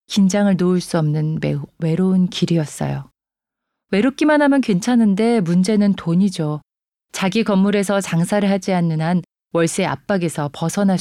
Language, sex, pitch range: Korean, female, 165-220 Hz